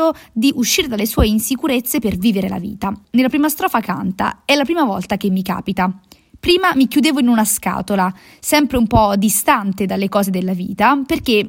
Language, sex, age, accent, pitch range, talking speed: Italian, female, 20-39, native, 200-265 Hz, 185 wpm